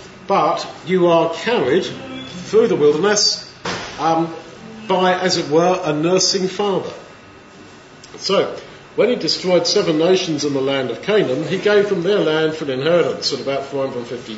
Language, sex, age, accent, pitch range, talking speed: English, male, 50-69, British, 155-210 Hz, 155 wpm